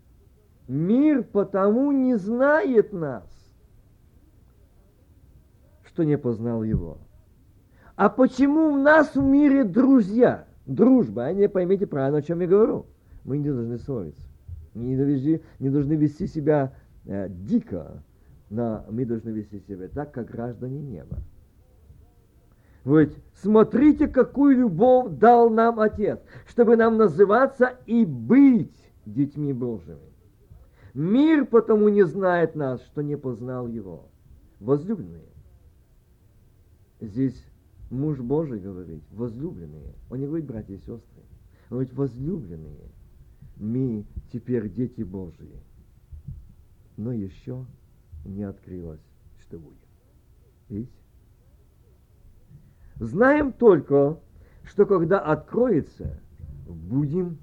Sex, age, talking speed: male, 50-69, 105 wpm